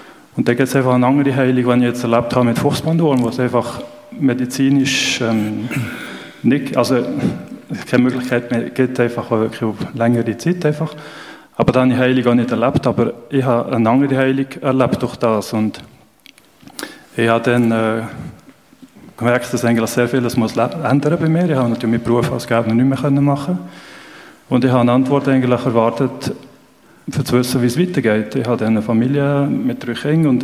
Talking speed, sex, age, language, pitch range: 180 wpm, male, 30-49, German, 120-140 Hz